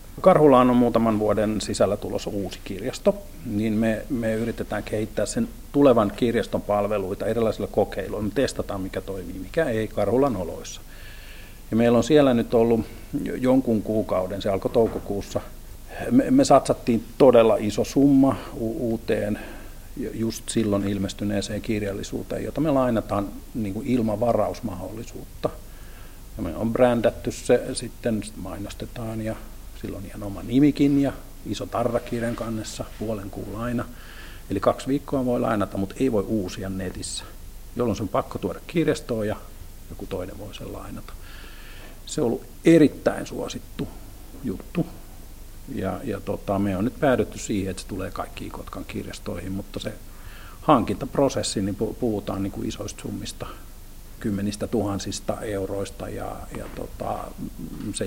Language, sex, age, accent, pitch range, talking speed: Finnish, male, 50-69, native, 100-115 Hz, 135 wpm